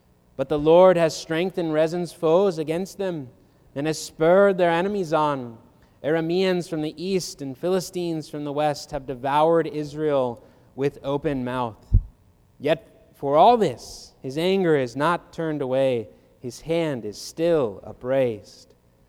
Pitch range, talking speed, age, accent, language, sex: 130-165 Hz, 140 wpm, 30-49, American, English, male